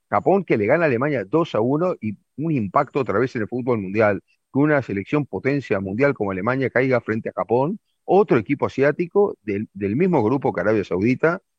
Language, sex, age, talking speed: Spanish, male, 40-59, 200 wpm